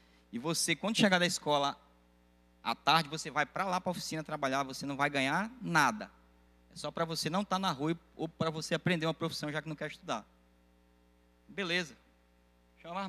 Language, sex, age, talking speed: Portuguese, male, 20-39, 200 wpm